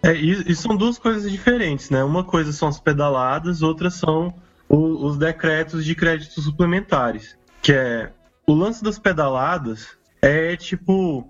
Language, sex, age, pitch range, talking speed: Portuguese, male, 20-39, 150-185 Hz, 155 wpm